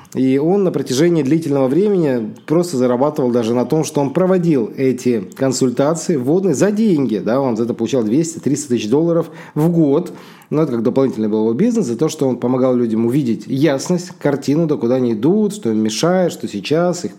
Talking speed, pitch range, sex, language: 190 wpm, 125-170 Hz, male, Russian